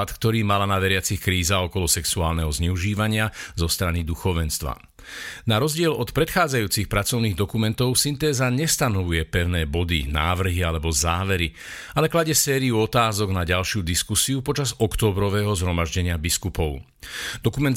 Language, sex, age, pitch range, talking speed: Slovak, male, 50-69, 95-125 Hz, 120 wpm